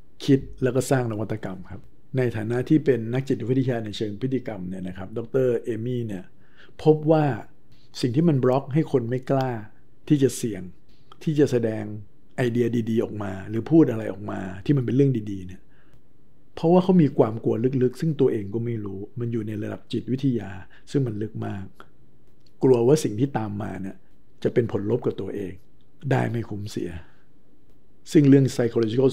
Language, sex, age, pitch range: Thai, male, 60-79, 105-130 Hz